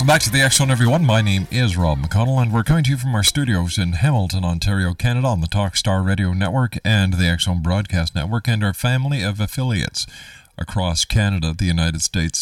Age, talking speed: 50-69, 215 wpm